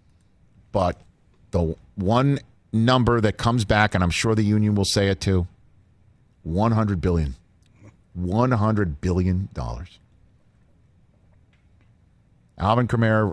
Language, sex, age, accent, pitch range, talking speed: English, male, 50-69, American, 90-120 Hz, 100 wpm